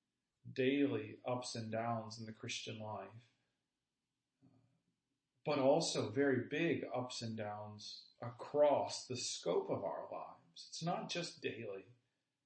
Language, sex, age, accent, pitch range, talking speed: English, male, 40-59, American, 125-145 Hz, 120 wpm